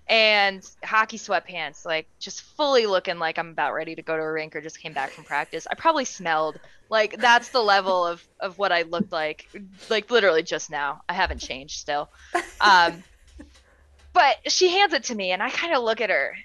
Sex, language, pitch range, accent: female, English, 165-230 Hz, American